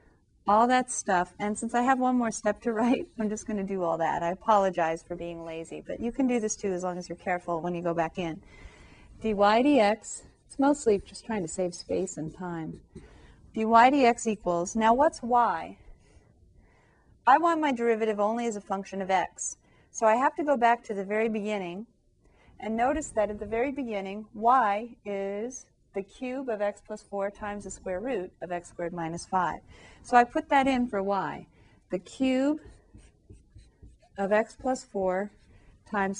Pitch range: 185-230 Hz